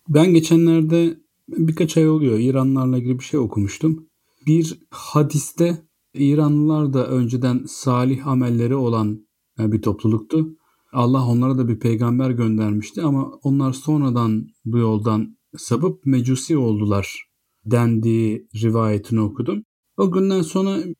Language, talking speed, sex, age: Turkish, 115 wpm, male, 40-59